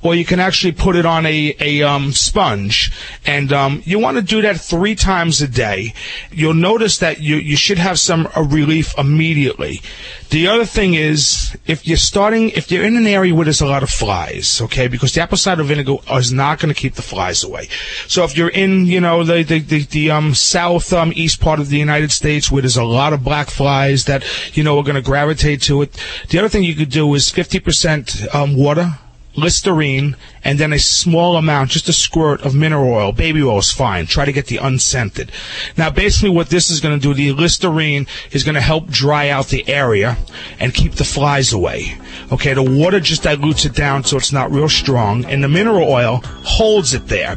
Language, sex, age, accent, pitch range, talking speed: English, male, 40-59, American, 140-170 Hz, 220 wpm